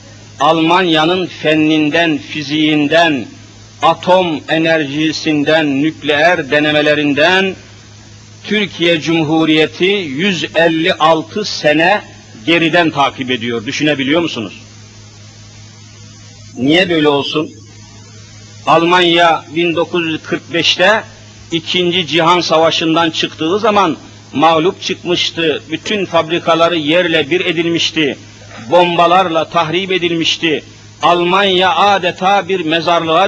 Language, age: Turkish, 50-69